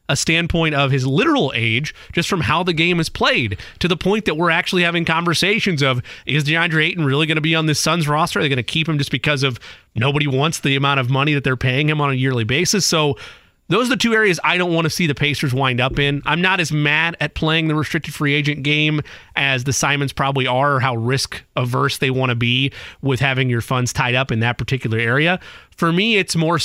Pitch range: 130-160 Hz